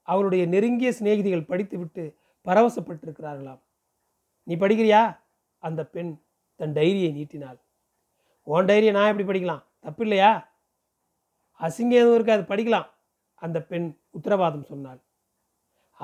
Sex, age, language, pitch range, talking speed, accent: male, 40-59, Tamil, 170-215 Hz, 105 wpm, native